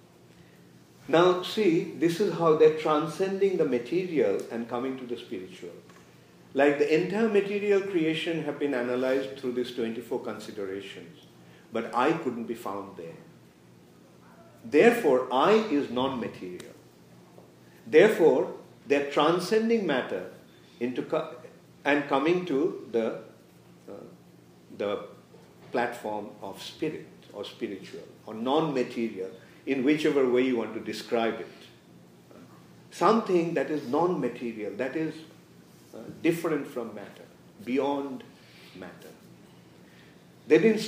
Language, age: English, 50-69